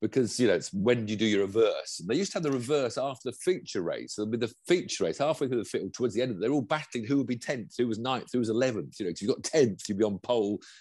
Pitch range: 100-140 Hz